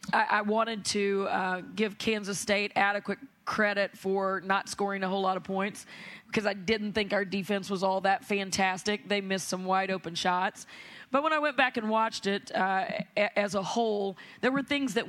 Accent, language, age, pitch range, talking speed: American, English, 30-49, 190-215 Hz, 195 wpm